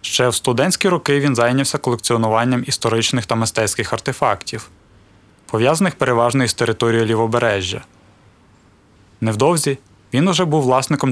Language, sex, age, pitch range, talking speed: Ukrainian, male, 20-39, 105-135 Hz, 115 wpm